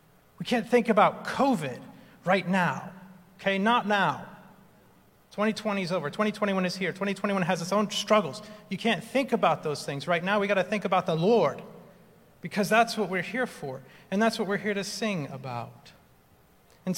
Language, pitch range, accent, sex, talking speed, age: English, 135-195 Hz, American, male, 180 wpm, 40-59